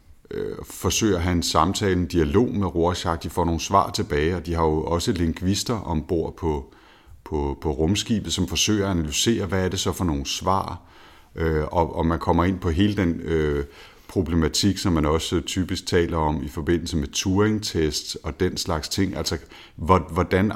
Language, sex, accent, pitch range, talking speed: Danish, male, native, 80-95 Hz, 180 wpm